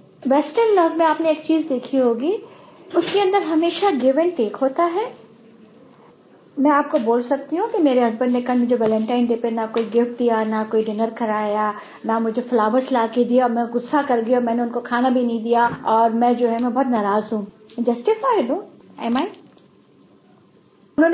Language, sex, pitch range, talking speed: Urdu, female, 235-315 Hz, 180 wpm